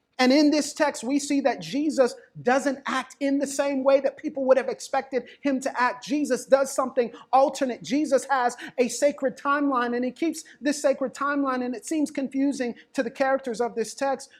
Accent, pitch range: American, 230-280 Hz